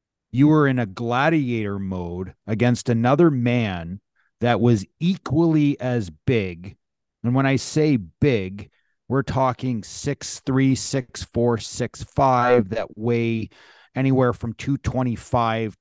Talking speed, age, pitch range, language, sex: 110 wpm, 40-59, 105-130 Hz, English, male